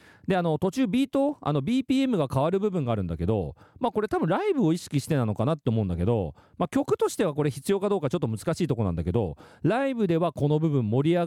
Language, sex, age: Japanese, male, 40-59